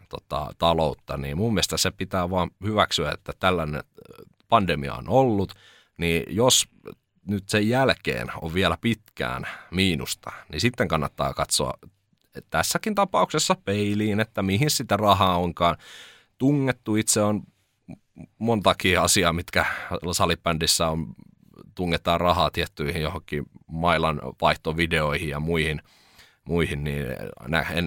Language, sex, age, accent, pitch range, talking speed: Finnish, male, 30-49, native, 75-100 Hz, 110 wpm